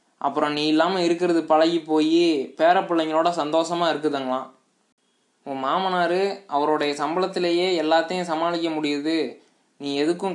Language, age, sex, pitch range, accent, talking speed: Tamil, 20-39, male, 145-175 Hz, native, 105 wpm